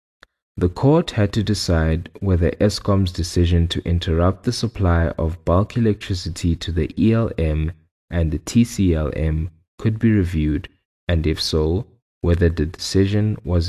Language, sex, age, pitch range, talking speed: English, male, 20-39, 80-100 Hz, 135 wpm